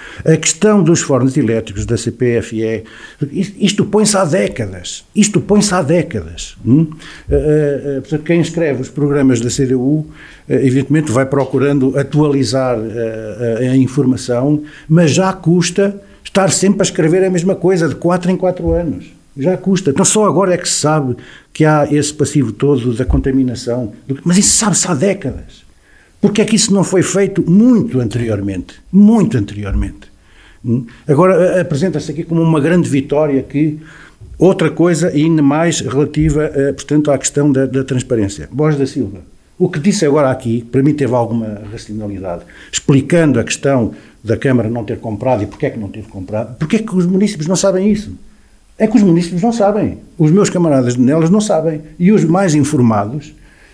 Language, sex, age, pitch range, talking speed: Portuguese, male, 50-69, 125-180 Hz, 160 wpm